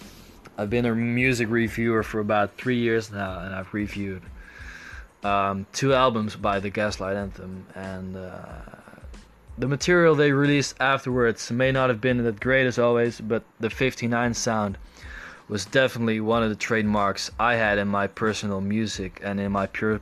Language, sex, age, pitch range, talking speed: Dutch, male, 20-39, 100-120 Hz, 165 wpm